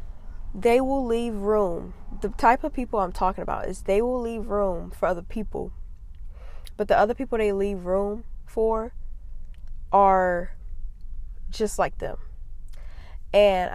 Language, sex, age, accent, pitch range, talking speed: English, female, 20-39, American, 170-205 Hz, 140 wpm